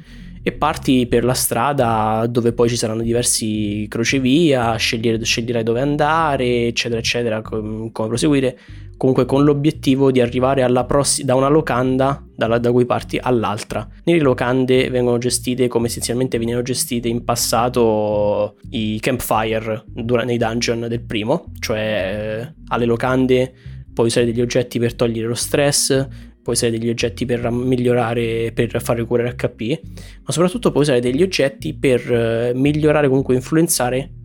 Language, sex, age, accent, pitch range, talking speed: Italian, male, 10-29, native, 115-130 Hz, 135 wpm